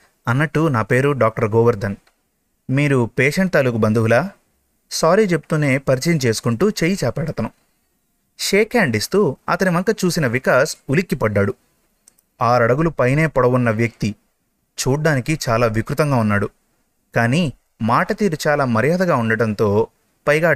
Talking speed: 115 wpm